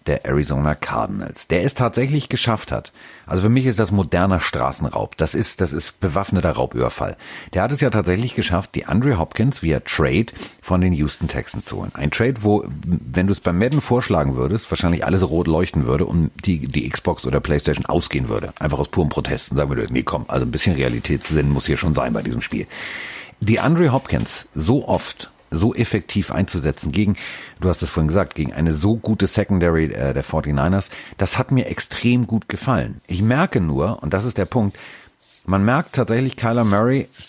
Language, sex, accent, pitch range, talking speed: German, male, German, 80-115 Hz, 195 wpm